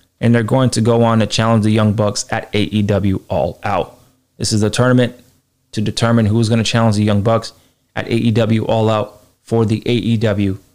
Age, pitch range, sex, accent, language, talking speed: 20-39, 105-130 Hz, male, American, English, 195 wpm